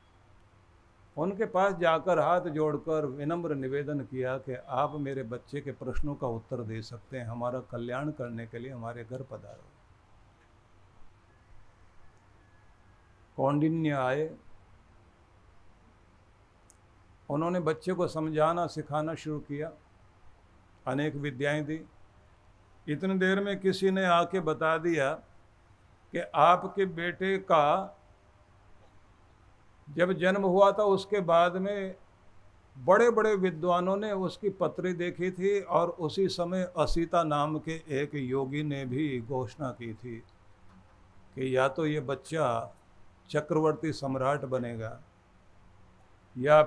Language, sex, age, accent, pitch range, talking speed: Hindi, male, 50-69, native, 100-165 Hz, 115 wpm